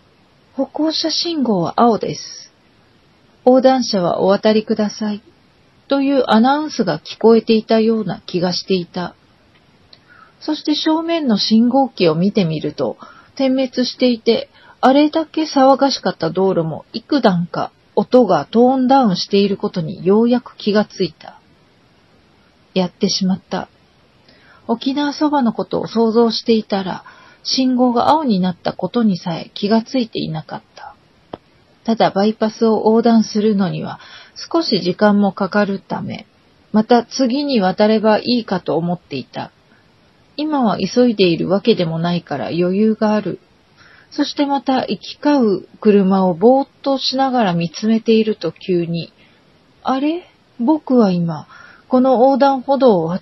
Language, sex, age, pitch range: Japanese, female, 40-59, 190-260 Hz